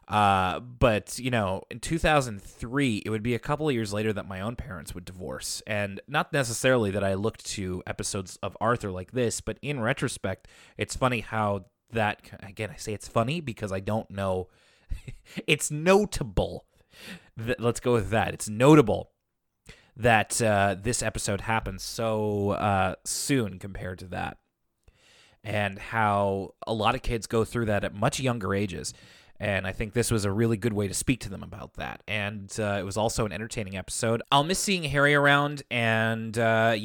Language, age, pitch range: English, 20-39, 105-140 Hz